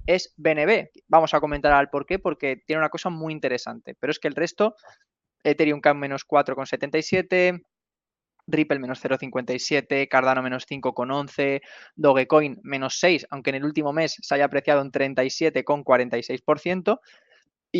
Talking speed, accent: 140 wpm, Spanish